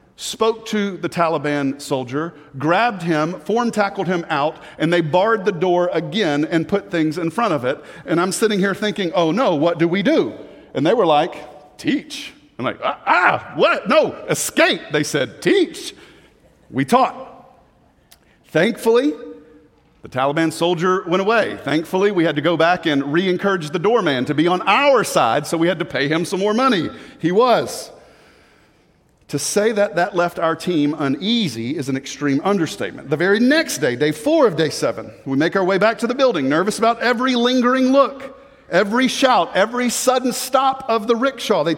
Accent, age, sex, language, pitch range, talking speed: American, 50-69, male, English, 165-235 Hz, 180 wpm